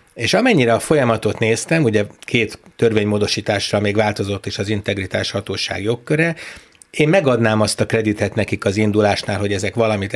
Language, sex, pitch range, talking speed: Hungarian, male, 105-125 Hz, 155 wpm